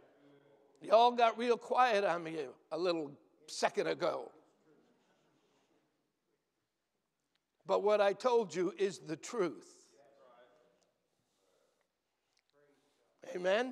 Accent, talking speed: American, 85 wpm